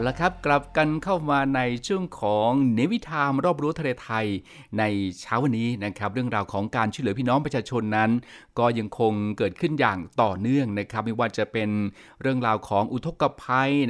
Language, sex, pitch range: Thai, male, 105-135 Hz